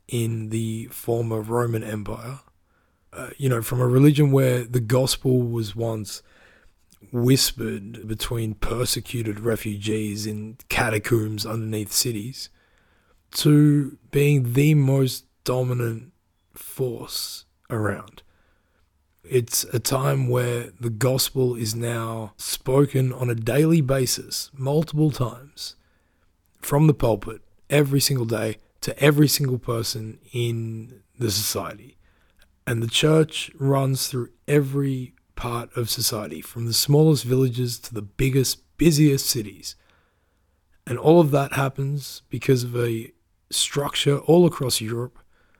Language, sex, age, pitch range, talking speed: English, male, 20-39, 110-135 Hz, 115 wpm